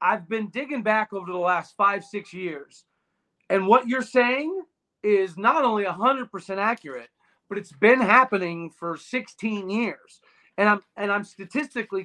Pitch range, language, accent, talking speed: 190-230 Hz, English, American, 155 wpm